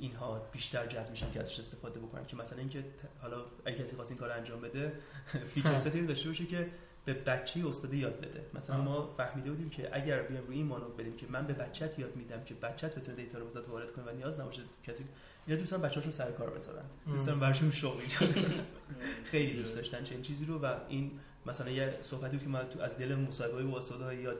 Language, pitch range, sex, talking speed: Persian, 125-150 Hz, male, 205 wpm